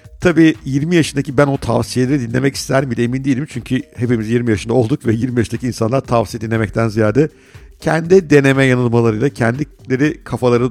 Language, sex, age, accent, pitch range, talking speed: Turkish, male, 50-69, native, 110-135 Hz, 160 wpm